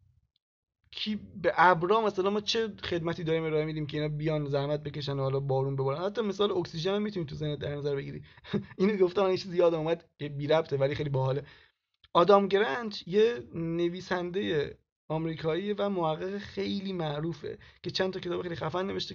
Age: 30-49